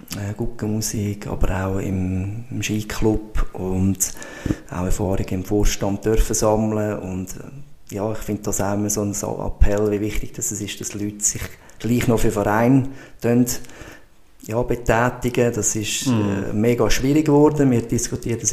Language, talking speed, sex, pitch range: German, 150 wpm, male, 100-115 Hz